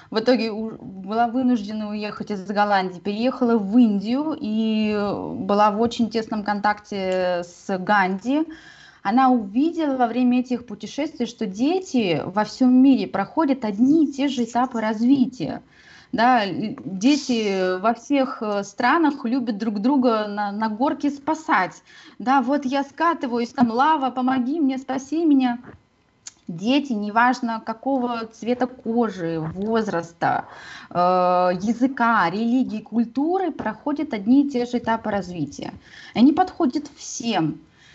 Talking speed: 120 wpm